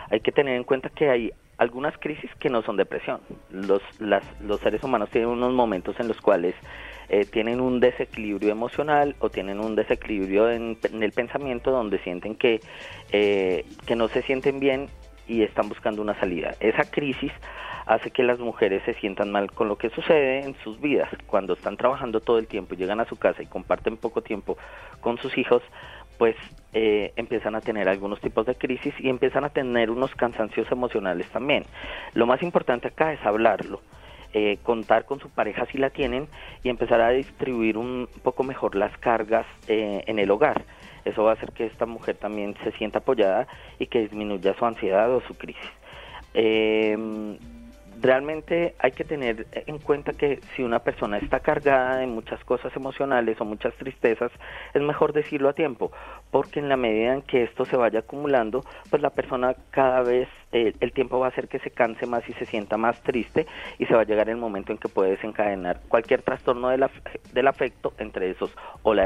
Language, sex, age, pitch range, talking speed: Spanish, male, 30-49, 110-130 Hz, 190 wpm